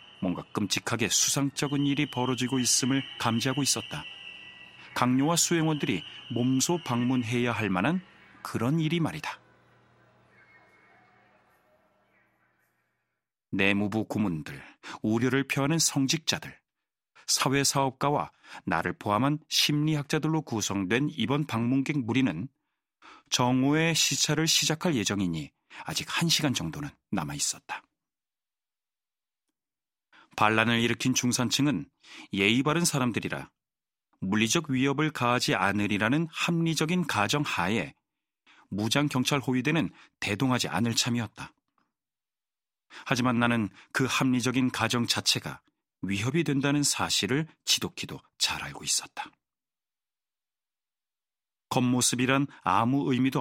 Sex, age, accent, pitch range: male, 40-59, native, 115-145 Hz